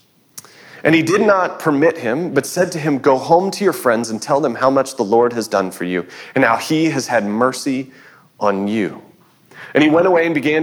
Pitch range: 130-175 Hz